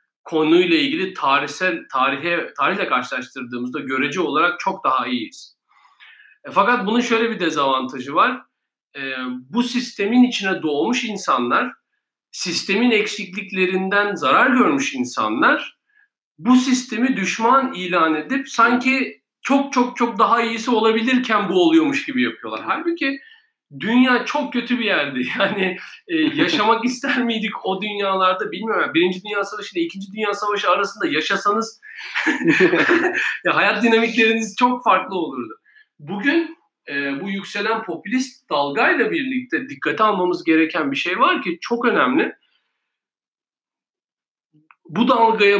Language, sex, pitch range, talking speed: Turkish, male, 185-255 Hz, 115 wpm